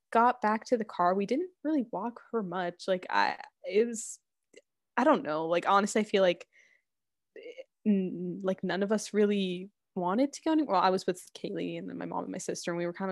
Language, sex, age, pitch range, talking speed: English, female, 10-29, 195-270 Hz, 220 wpm